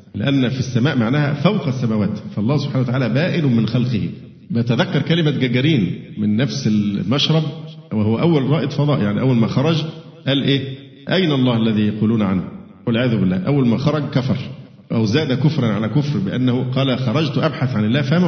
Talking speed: 165 wpm